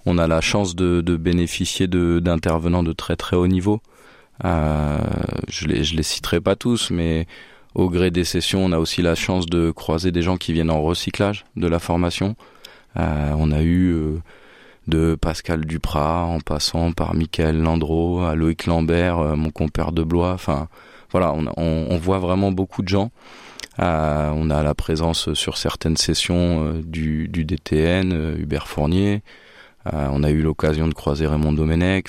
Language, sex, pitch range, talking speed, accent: French, male, 80-90 Hz, 185 wpm, French